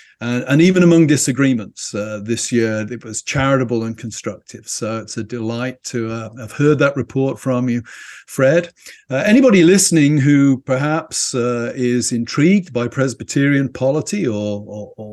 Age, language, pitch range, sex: 50-69, English, 120-145 Hz, male